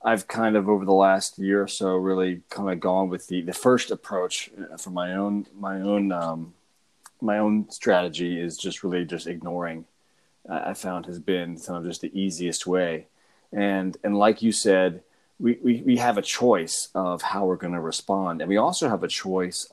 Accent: American